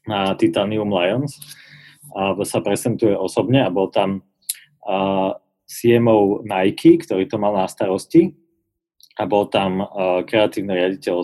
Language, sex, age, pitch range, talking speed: English, male, 30-49, 95-110 Hz, 130 wpm